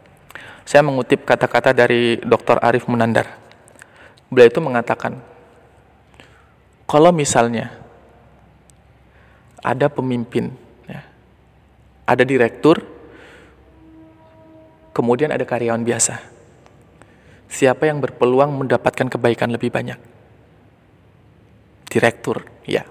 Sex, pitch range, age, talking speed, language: male, 120-150 Hz, 20-39, 80 wpm, Indonesian